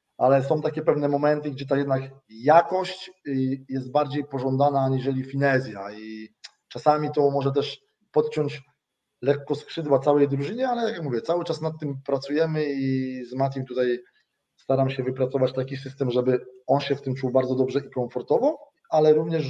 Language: Polish